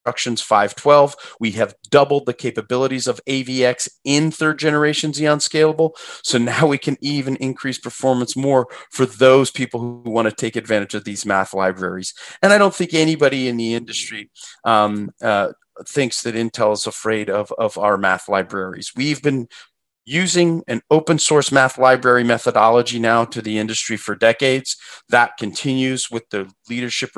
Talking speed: 155 wpm